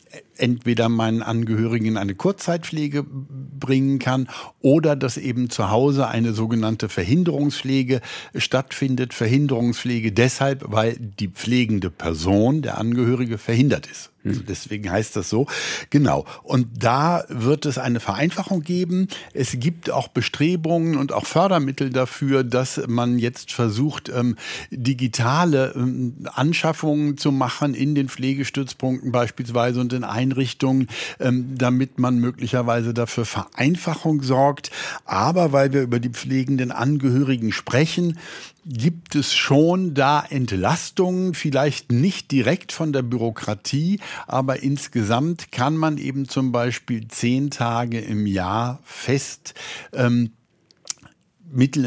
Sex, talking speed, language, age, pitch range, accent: male, 115 wpm, German, 60-79, 120-145 Hz, German